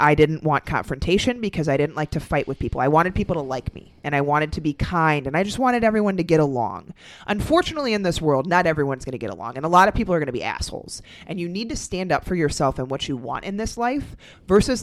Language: English